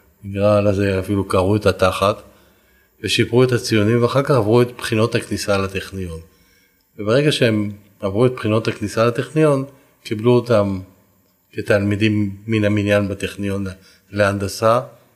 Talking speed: 120 wpm